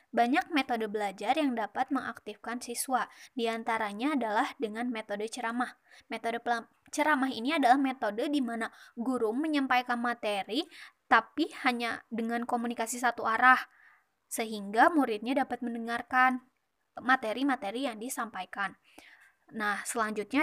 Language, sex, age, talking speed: Indonesian, female, 20-39, 110 wpm